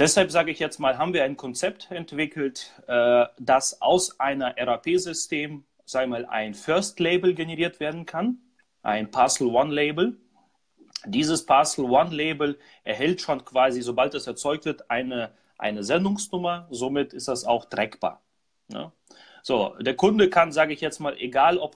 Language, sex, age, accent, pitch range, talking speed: German, male, 30-49, German, 130-180 Hz, 145 wpm